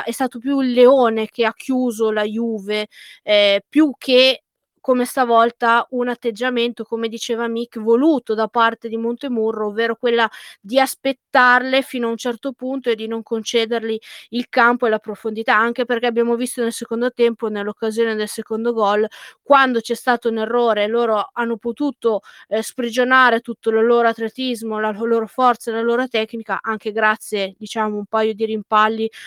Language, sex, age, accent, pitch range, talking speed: Italian, female, 20-39, native, 220-245 Hz, 170 wpm